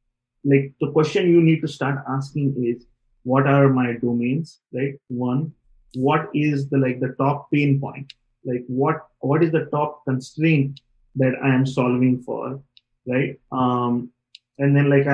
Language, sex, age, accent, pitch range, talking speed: English, male, 30-49, Indian, 125-155 Hz, 160 wpm